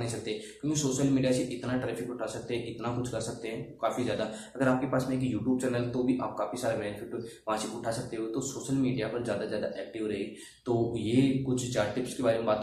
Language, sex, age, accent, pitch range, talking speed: Hindi, male, 20-39, native, 110-130 Hz, 180 wpm